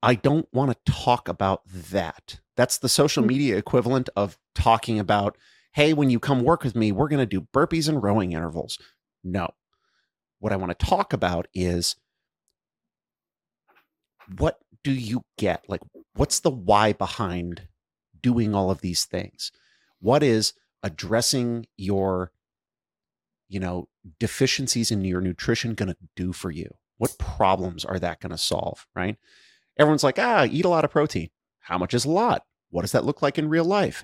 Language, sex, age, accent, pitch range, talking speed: English, male, 30-49, American, 95-130 Hz, 170 wpm